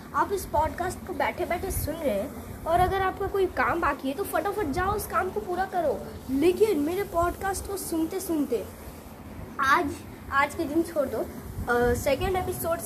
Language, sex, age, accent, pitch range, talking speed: English, female, 20-39, Indian, 260-365 Hz, 175 wpm